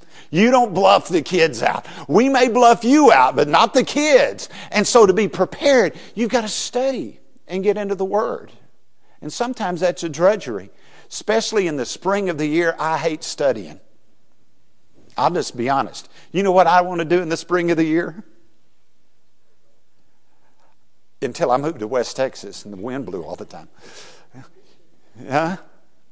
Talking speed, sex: 170 wpm, male